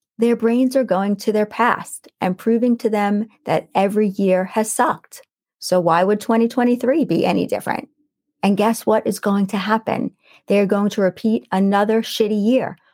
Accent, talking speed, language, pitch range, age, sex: American, 170 wpm, English, 205-250 Hz, 30-49, female